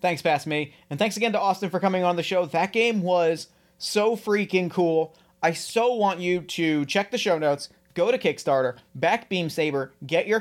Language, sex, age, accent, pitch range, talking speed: English, male, 30-49, American, 160-210 Hz, 210 wpm